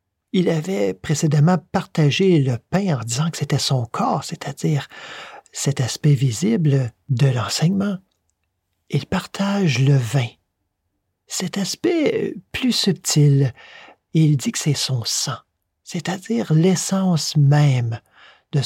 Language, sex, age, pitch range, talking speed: French, male, 50-69, 125-175 Hz, 115 wpm